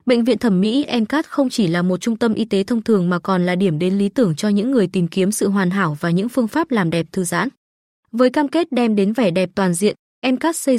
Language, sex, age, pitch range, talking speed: Vietnamese, female, 20-39, 190-250 Hz, 275 wpm